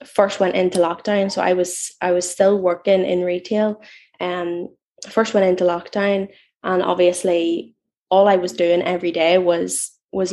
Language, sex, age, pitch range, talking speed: English, female, 10-29, 175-200 Hz, 170 wpm